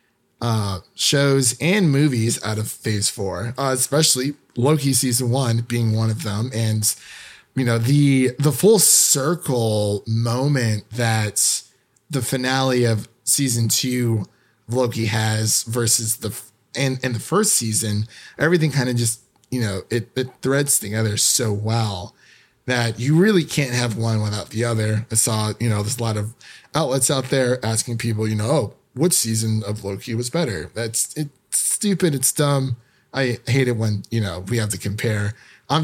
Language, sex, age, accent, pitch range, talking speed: English, male, 30-49, American, 110-130 Hz, 170 wpm